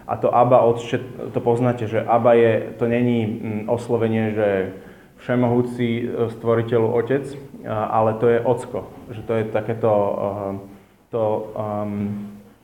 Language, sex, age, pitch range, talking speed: Slovak, male, 20-39, 110-135 Hz, 120 wpm